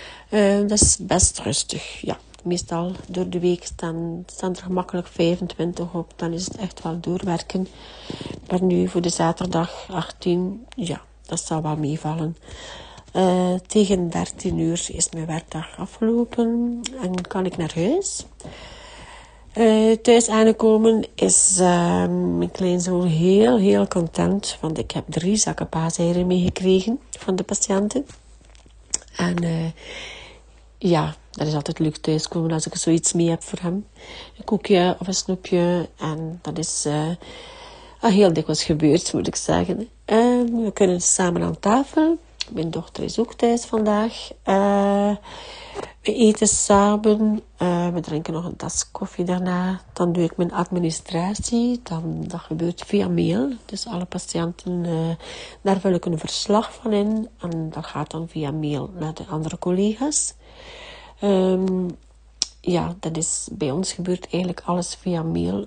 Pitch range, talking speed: 165-205 Hz, 145 wpm